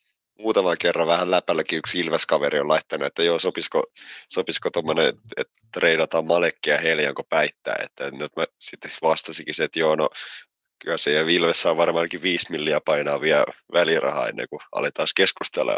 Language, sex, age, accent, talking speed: Finnish, male, 30-49, native, 155 wpm